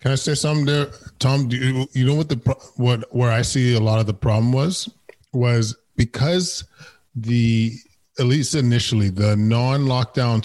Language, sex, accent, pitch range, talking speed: English, male, American, 115-135 Hz, 170 wpm